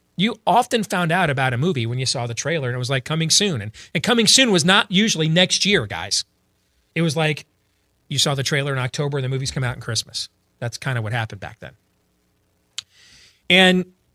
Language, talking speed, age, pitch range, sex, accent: English, 220 wpm, 40-59, 120-170 Hz, male, American